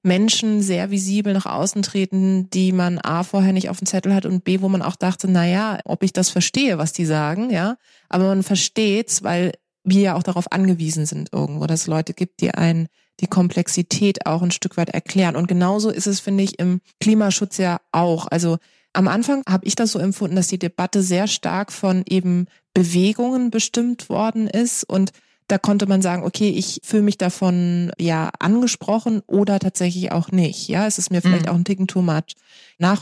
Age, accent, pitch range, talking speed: 30-49, German, 180-205 Hz, 200 wpm